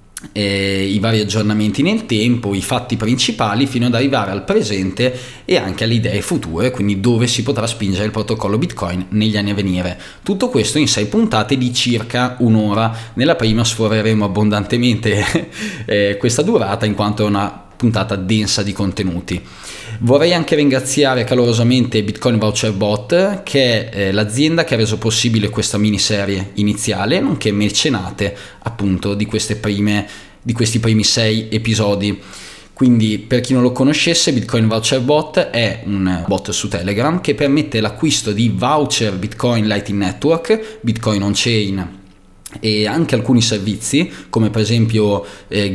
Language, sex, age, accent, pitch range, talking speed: Italian, male, 20-39, native, 105-120 Hz, 150 wpm